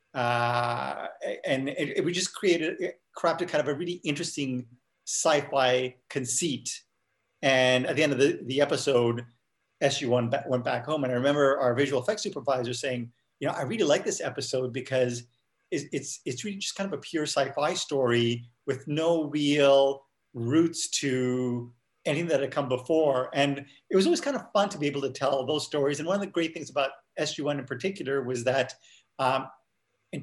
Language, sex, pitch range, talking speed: English, male, 130-155 Hz, 185 wpm